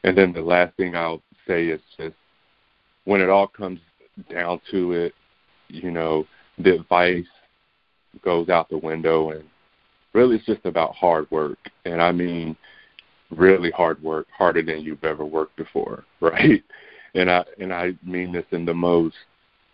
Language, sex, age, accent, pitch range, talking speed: English, male, 40-59, American, 80-90 Hz, 160 wpm